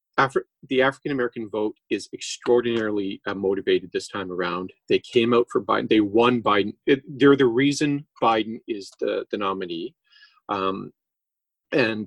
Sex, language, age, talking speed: male, English, 40-59, 150 wpm